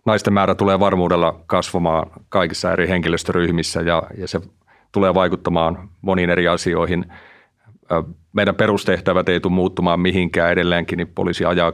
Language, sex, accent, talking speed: Finnish, male, native, 130 wpm